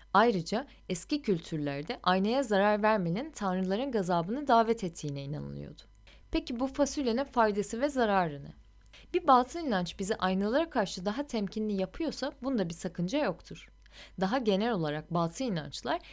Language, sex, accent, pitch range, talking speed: Turkish, female, native, 170-235 Hz, 135 wpm